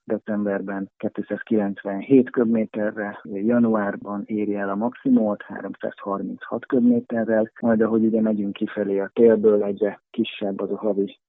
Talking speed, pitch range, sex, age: 115 wpm, 105-125 Hz, male, 30-49